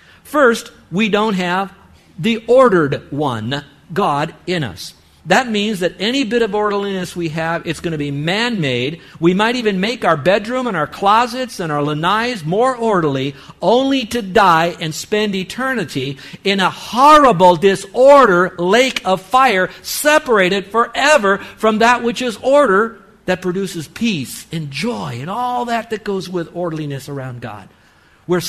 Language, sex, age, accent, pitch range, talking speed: English, male, 50-69, American, 150-220 Hz, 155 wpm